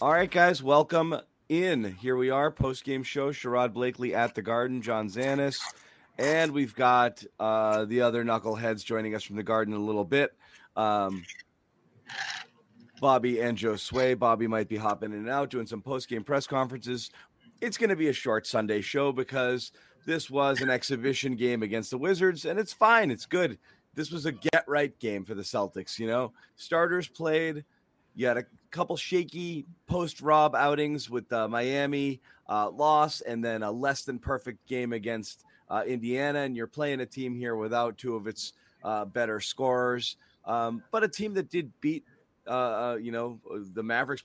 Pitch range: 115-145 Hz